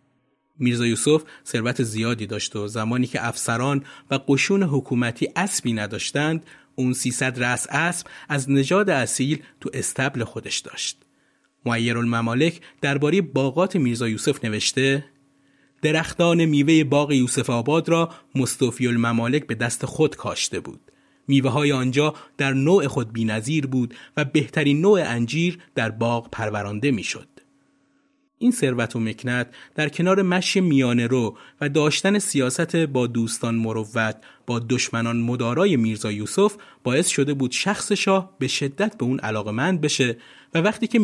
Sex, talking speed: male, 140 wpm